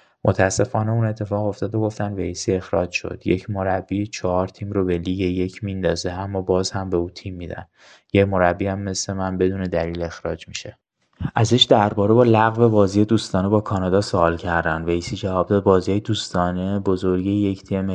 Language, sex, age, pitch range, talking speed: Persian, male, 20-39, 90-100 Hz, 175 wpm